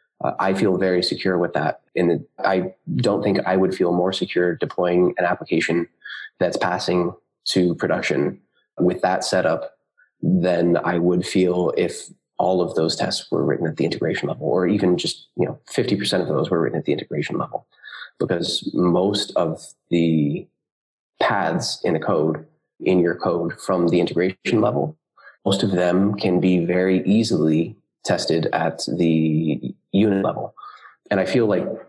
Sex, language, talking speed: male, English, 160 wpm